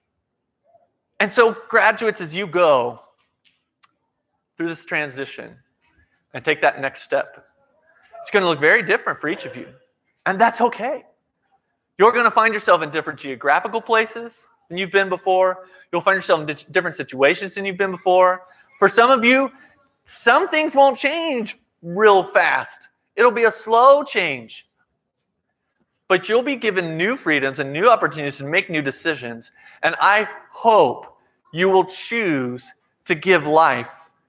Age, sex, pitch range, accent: 30-49, male, 155-225 Hz, American